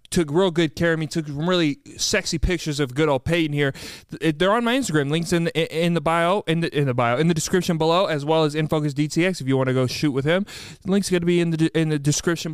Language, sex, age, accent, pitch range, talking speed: English, male, 20-39, American, 155-195 Hz, 270 wpm